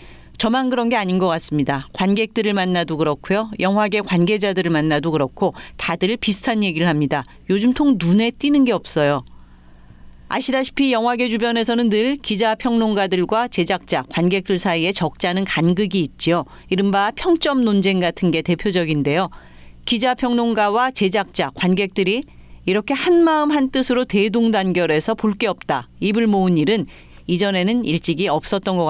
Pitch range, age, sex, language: 175-240 Hz, 40-59, female, Korean